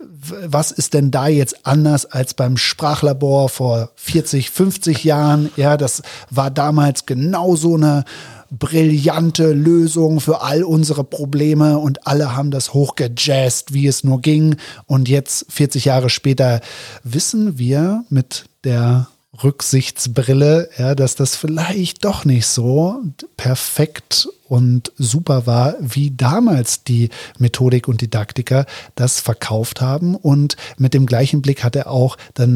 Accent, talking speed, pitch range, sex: German, 135 wpm, 125-145 Hz, male